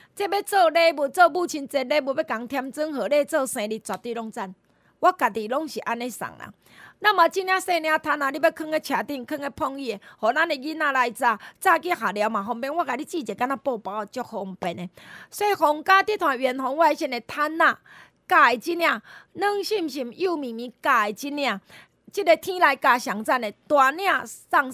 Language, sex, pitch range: Chinese, female, 240-325 Hz